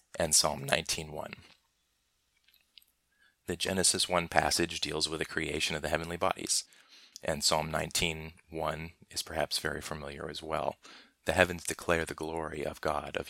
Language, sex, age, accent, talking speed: English, male, 30-49, American, 145 wpm